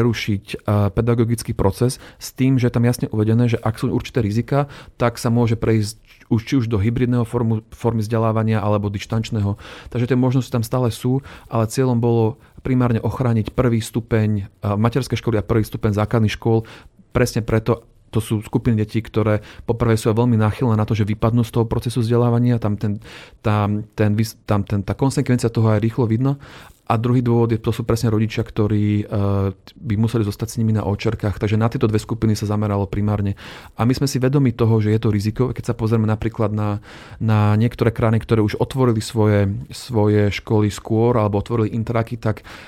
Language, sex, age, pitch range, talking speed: Slovak, male, 30-49, 105-120 Hz, 185 wpm